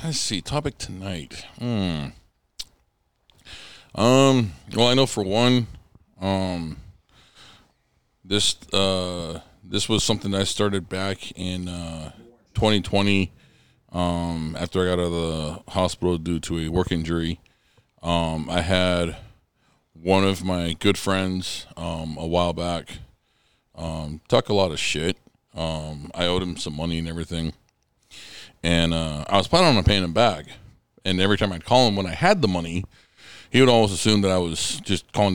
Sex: male